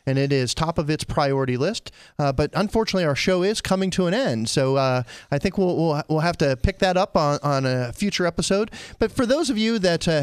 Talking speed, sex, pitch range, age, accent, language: 245 wpm, male, 140-190 Hz, 40-59, American, English